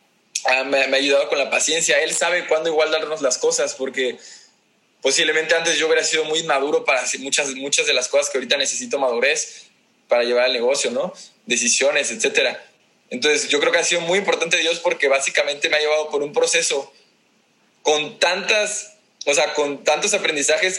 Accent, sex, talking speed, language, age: Mexican, male, 185 wpm, Spanish, 20-39